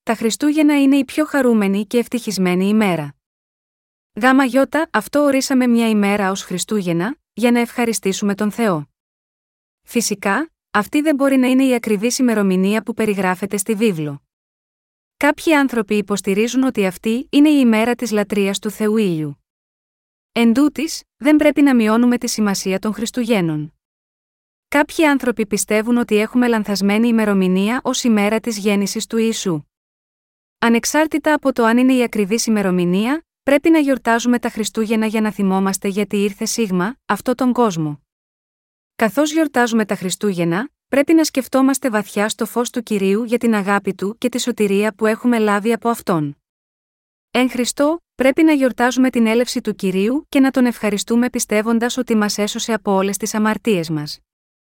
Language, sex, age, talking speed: Greek, female, 20-39, 150 wpm